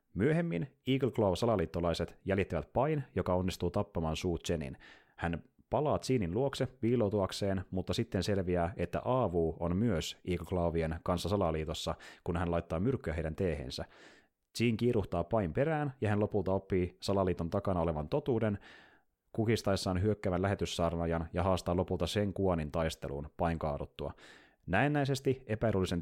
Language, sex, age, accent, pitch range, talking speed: Finnish, male, 30-49, native, 85-105 Hz, 130 wpm